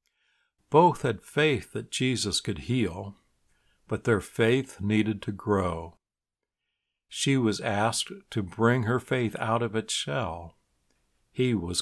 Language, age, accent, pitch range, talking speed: English, 60-79, American, 100-120 Hz, 130 wpm